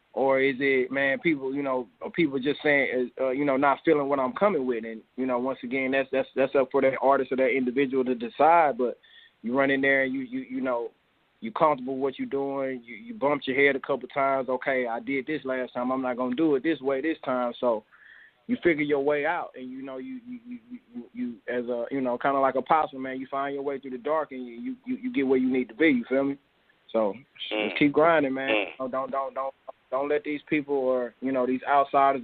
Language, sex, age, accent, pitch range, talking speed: English, male, 20-39, American, 130-150 Hz, 260 wpm